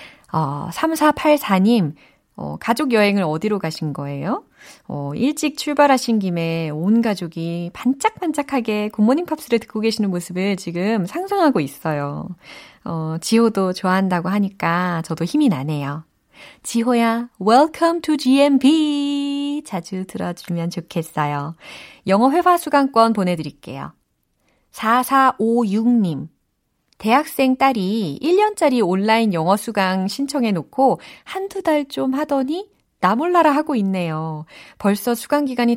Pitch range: 180-265 Hz